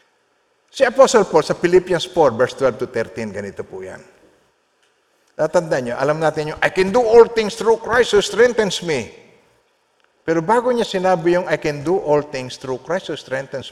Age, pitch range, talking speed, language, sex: 50-69, 150-245 Hz, 170 wpm, Filipino, male